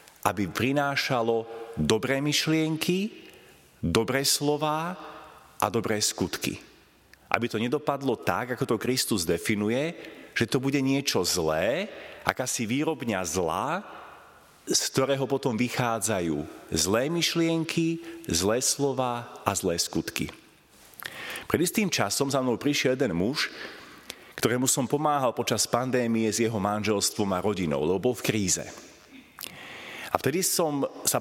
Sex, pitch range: male, 110-145 Hz